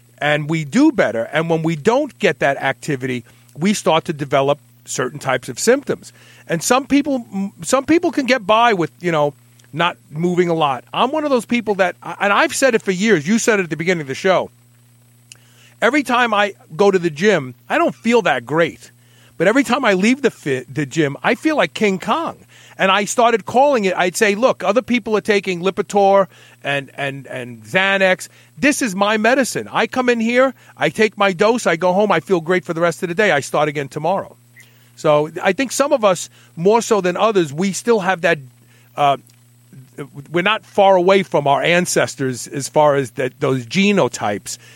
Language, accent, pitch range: English, American, 135-210 Hz